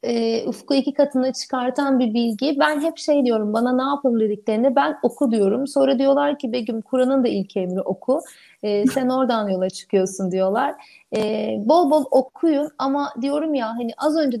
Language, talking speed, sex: Turkish, 180 wpm, female